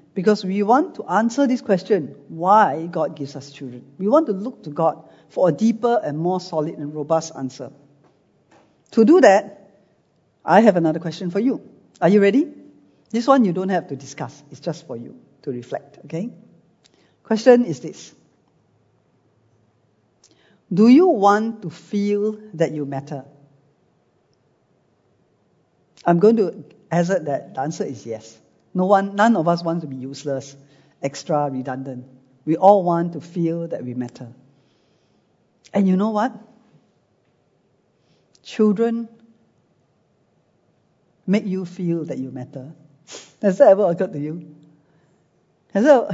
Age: 50-69